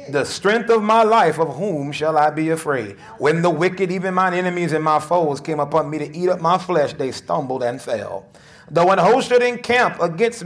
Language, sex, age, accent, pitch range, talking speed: English, male, 30-49, American, 160-200 Hz, 220 wpm